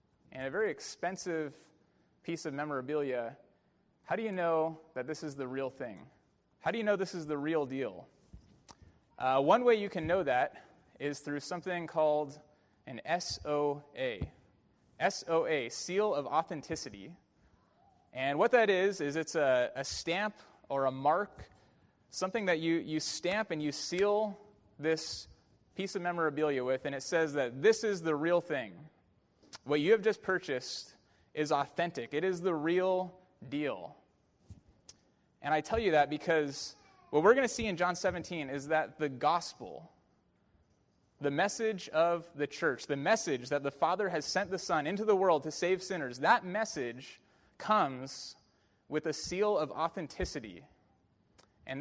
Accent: American